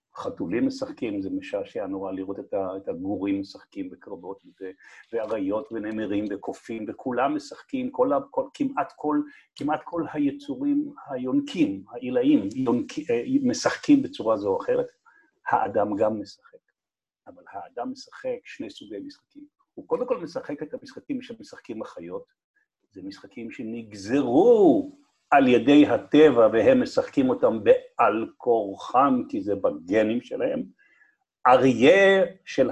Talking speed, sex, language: 120 wpm, male, Hebrew